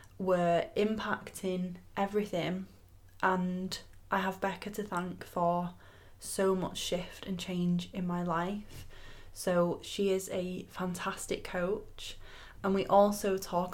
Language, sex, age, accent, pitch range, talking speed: English, female, 20-39, British, 170-190 Hz, 120 wpm